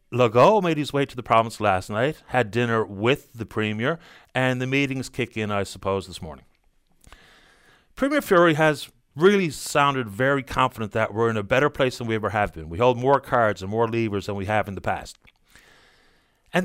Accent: American